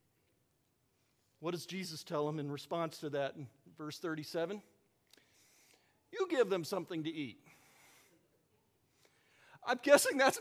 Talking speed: 120 wpm